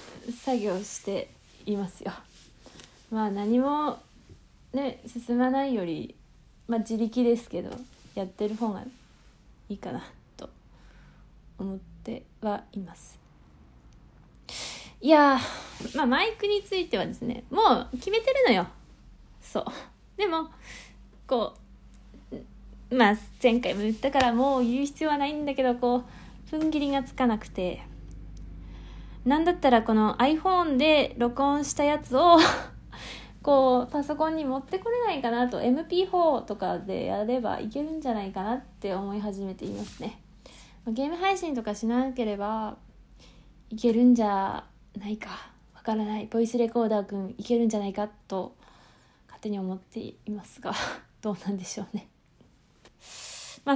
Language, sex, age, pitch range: Japanese, female, 20-39, 205-275 Hz